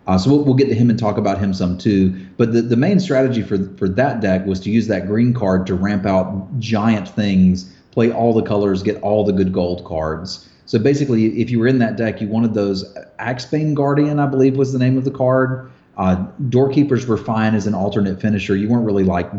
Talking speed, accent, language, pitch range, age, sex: 230 wpm, American, English, 95-120 Hz, 30-49, male